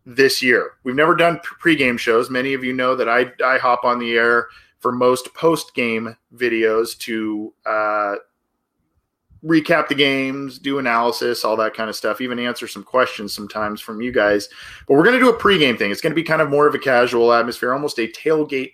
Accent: American